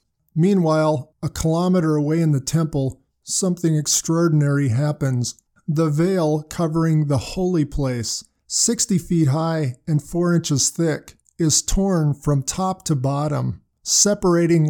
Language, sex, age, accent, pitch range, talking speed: English, male, 50-69, American, 145-170 Hz, 125 wpm